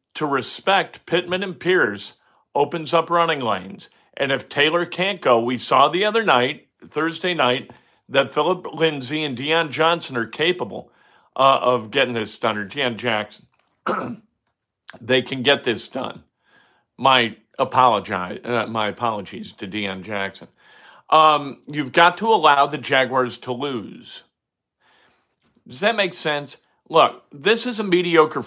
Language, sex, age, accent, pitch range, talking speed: English, male, 50-69, American, 120-165 Hz, 145 wpm